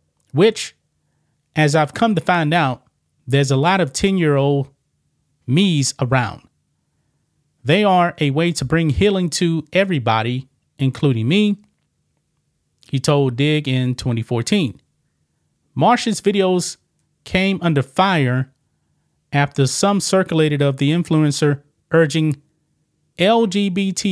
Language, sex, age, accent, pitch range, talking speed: English, male, 30-49, American, 135-175 Hz, 110 wpm